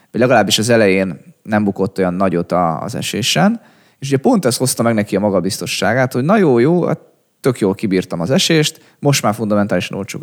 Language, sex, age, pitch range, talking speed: Hungarian, male, 20-39, 100-120 Hz, 190 wpm